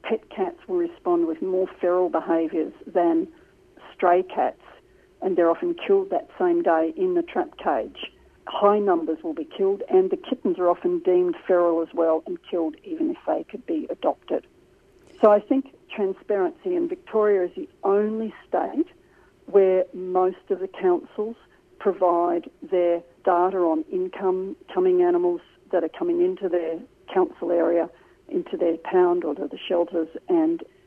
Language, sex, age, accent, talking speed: English, female, 50-69, Australian, 155 wpm